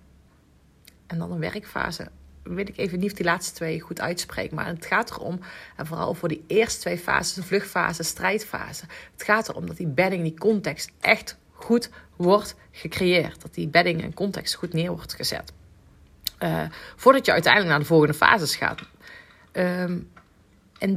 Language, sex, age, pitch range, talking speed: Dutch, female, 30-49, 160-200 Hz, 170 wpm